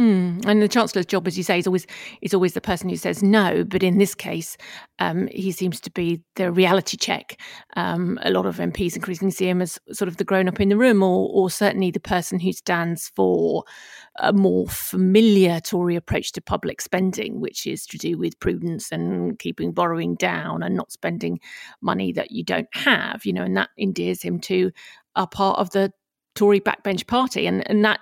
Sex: female